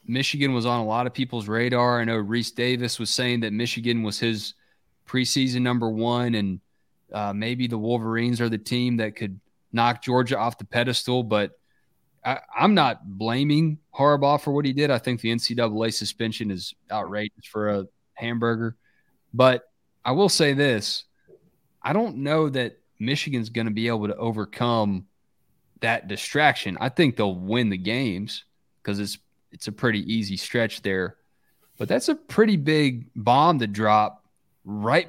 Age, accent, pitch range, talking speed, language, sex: 30-49, American, 105-135 Hz, 165 wpm, English, male